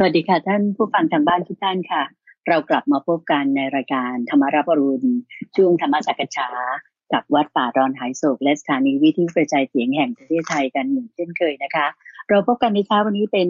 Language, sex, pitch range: English, female, 145-245 Hz